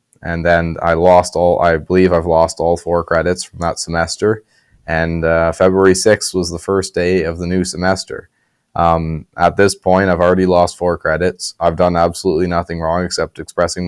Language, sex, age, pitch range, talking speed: English, male, 20-39, 85-90 Hz, 185 wpm